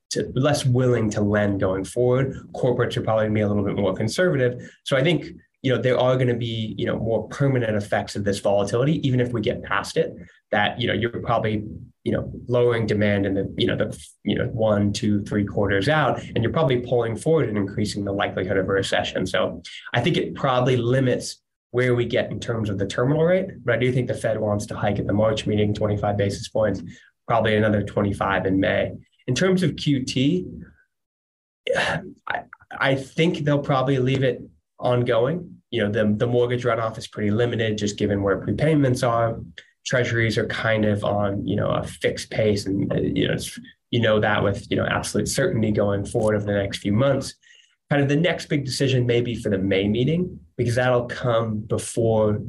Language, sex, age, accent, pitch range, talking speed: English, male, 20-39, American, 100-125 Hz, 205 wpm